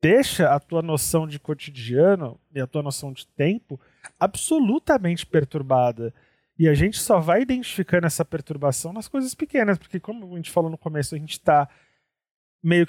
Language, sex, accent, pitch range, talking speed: Portuguese, male, Brazilian, 155-205 Hz, 170 wpm